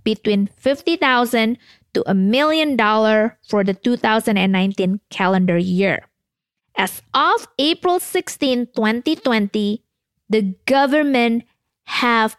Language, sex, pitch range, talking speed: English, female, 205-280 Hz, 90 wpm